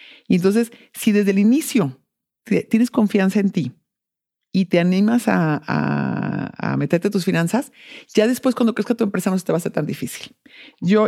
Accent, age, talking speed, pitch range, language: Mexican, 50-69, 190 wpm, 165-215 Hz, English